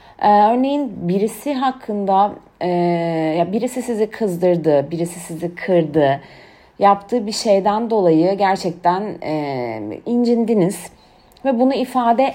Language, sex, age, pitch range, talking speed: Turkish, female, 40-59, 160-225 Hz, 90 wpm